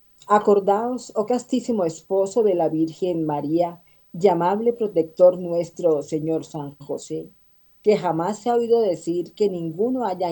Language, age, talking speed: Spanish, 40-59, 140 wpm